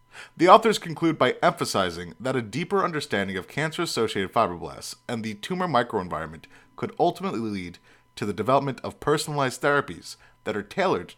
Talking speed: 150 wpm